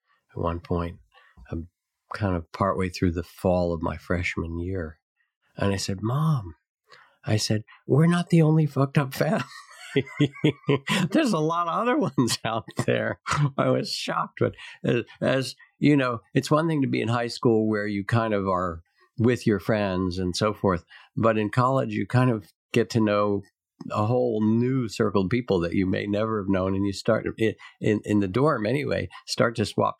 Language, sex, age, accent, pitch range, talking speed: English, male, 50-69, American, 85-115 Hz, 185 wpm